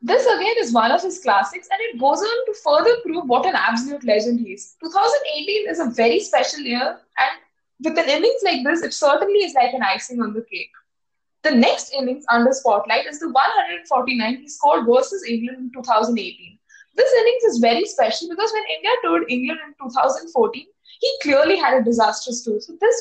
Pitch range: 240-375 Hz